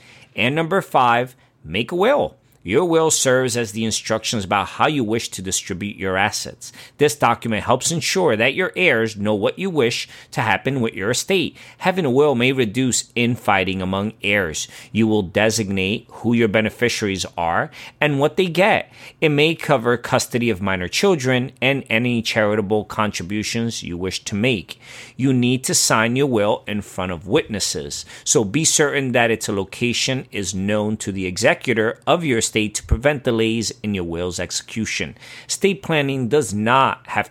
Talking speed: 170 wpm